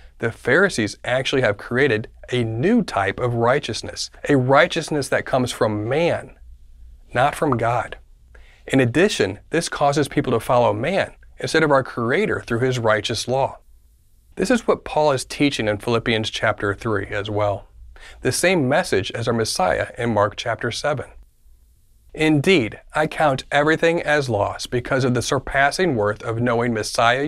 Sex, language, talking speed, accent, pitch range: male, English, 155 wpm, American, 105-135 Hz